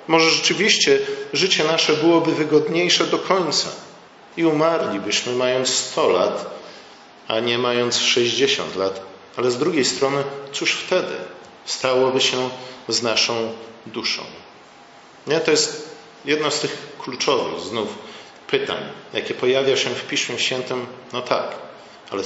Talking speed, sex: 125 wpm, male